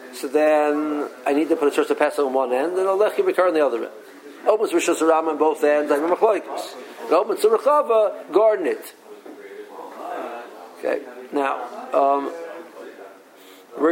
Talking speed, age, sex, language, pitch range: 140 wpm, 50-69, male, English, 145-185 Hz